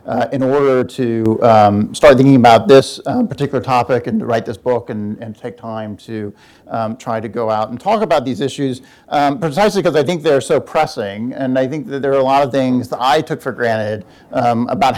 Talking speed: 230 wpm